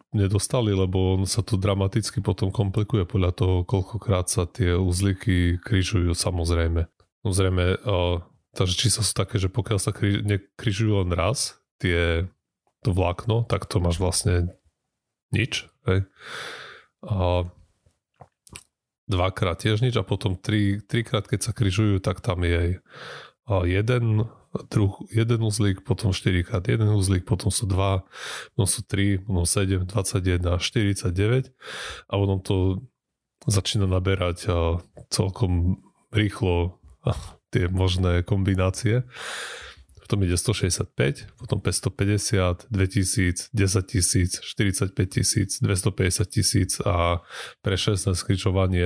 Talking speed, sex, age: 115 wpm, male, 20-39